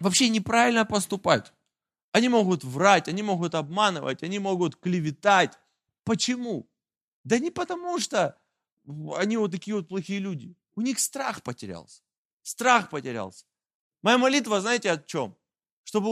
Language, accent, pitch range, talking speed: Russian, native, 190-245 Hz, 130 wpm